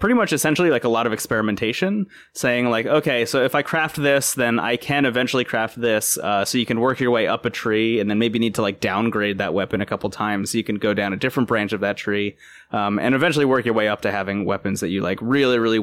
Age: 20-39